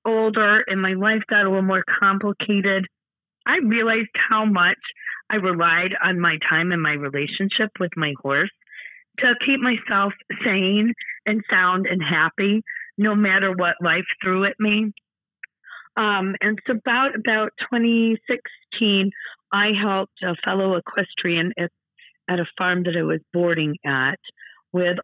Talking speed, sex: 145 wpm, female